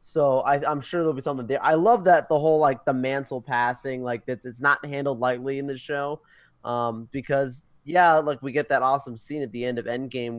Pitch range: 120-160 Hz